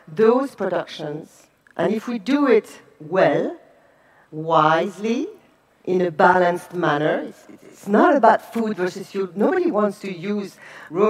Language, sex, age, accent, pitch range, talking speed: English, female, 50-69, French, 170-230 Hz, 135 wpm